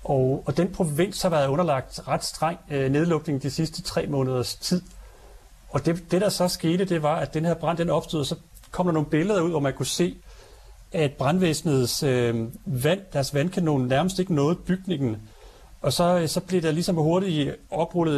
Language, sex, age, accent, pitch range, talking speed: Danish, male, 40-59, native, 135-170 Hz, 195 wpm